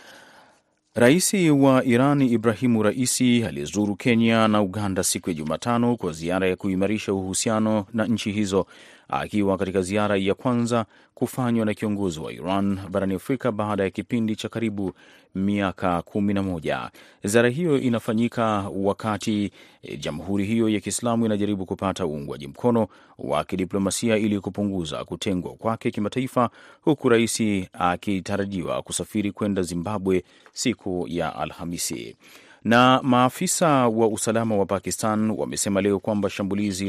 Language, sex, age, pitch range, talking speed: Swahili, male, 30-49, 95-115 Hz, 125 wpm